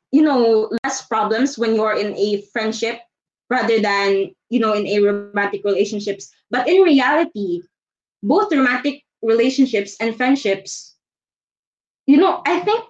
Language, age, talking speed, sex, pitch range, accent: Filipino, 20-39, 135 wpm, female, 210-270 Hz, native